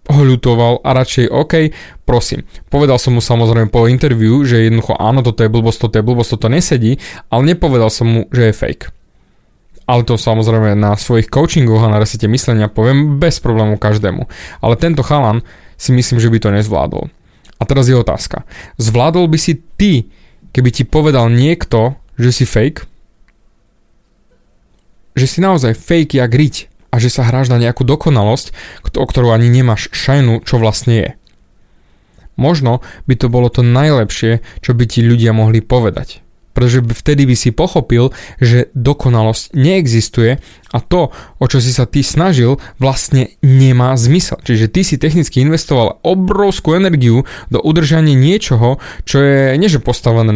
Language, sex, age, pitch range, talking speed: Slovak, male, 20-39, 115-145 Hz, 155 wpm